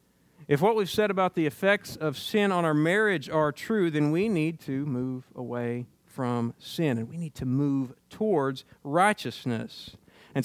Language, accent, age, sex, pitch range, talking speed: English, American, 40-59, male, 130-185 Hz, 170 wpm